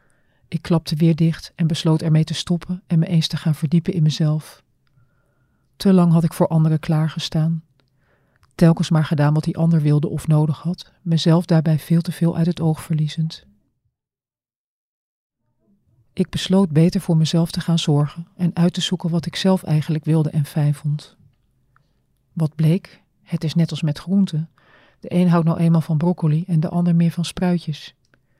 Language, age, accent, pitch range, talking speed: Dutch, 40-59, Dutch, 150-170 Hz, 180 wpm